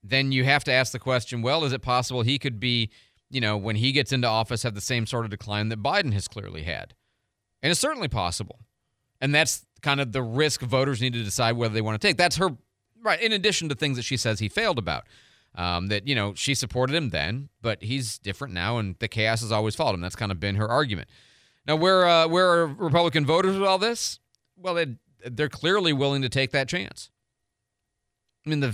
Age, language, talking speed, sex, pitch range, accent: 40-59, English, 230 wpm, male, 110-140 Hz, American